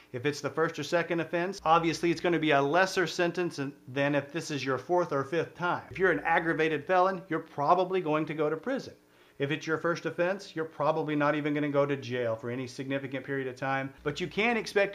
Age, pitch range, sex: 40-59, 140-175 Hz, male